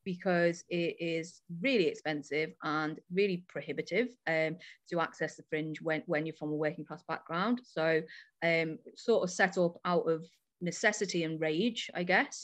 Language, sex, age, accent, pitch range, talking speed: English, female, 30-49, British, 170-190 Hz, 165 wpm